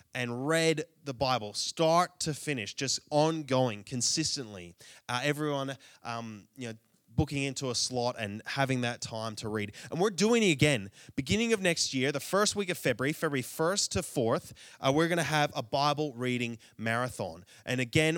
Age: 20-39